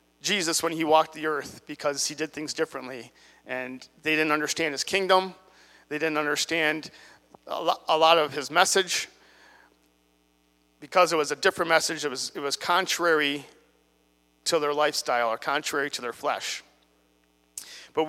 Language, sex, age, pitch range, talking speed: English, male, 40-59, 125-165 Hz, 150 wpm